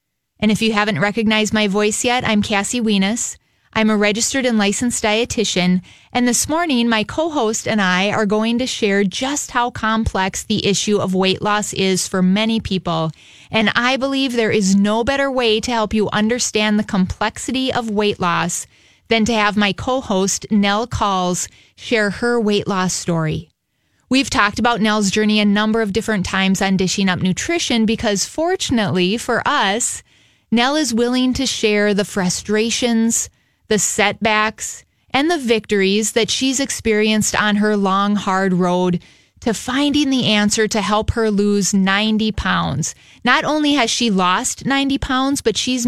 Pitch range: 200-235 Hz